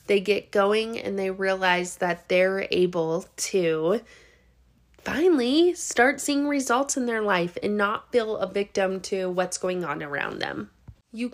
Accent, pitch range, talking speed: American, 195-245 Hz, 155 wpm